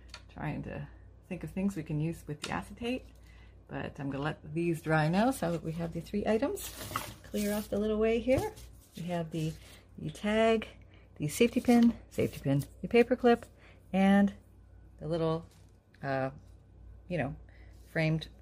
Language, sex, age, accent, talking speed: English, female, 30-49, American, 165 wpm